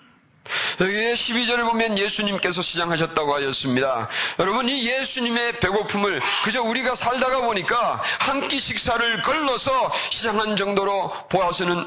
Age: 40-59